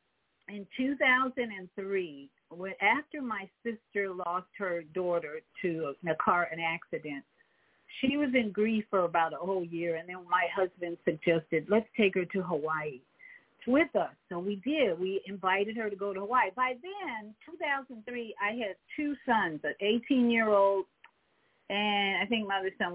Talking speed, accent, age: 150 wpm, American, 50-69